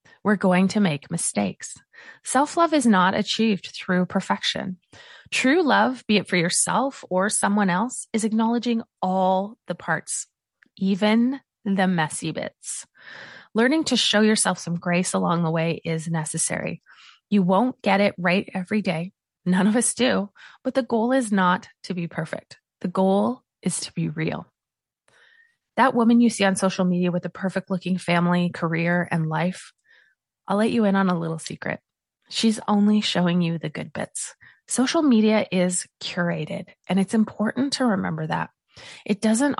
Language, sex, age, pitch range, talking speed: English, female, 20-39, 175-225 Hz, 160 wpm